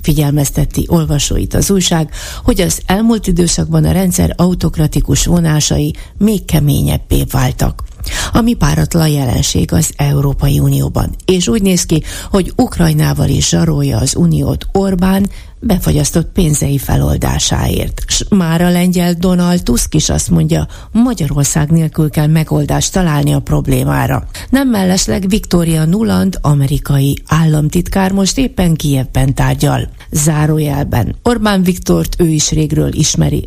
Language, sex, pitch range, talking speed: Hungarian, female, 145-180 Hz, 120 wpm